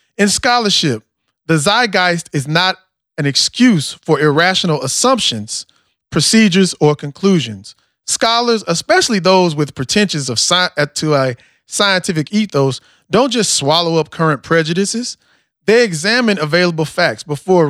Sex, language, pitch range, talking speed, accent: male, English, 145-195 Hz, 115 wpm, American